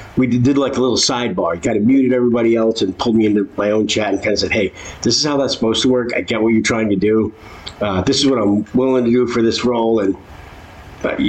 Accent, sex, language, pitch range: American, male, English, 85-115 Hz